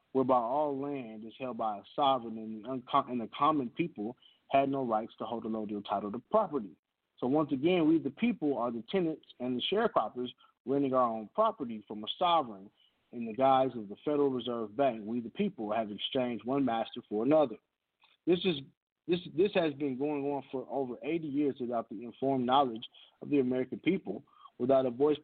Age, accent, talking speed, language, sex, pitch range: 30-49, American, 195 wpm, English, male, 120-145 Hz